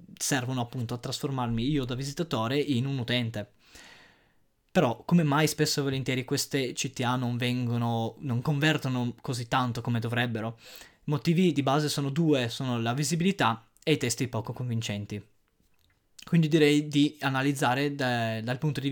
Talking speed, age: 150 wpm, 20-39